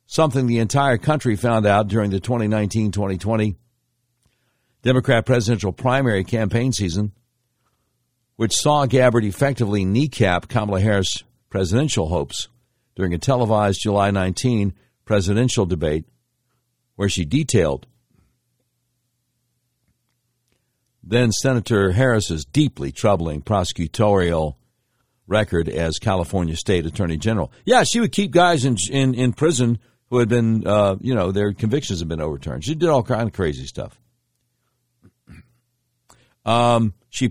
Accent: American